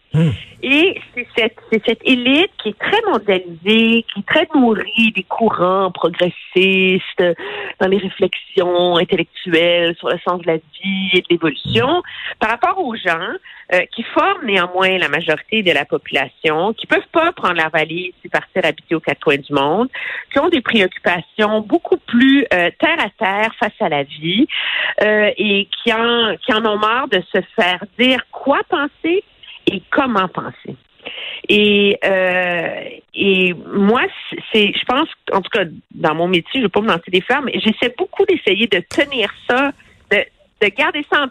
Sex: female